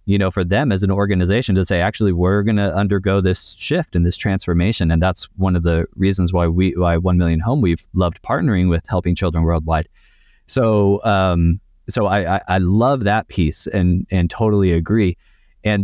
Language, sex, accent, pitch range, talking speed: English, male, American, 90-105 Hz, 195 wpm